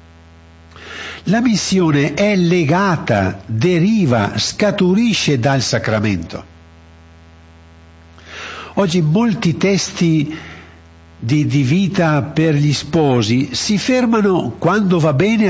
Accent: native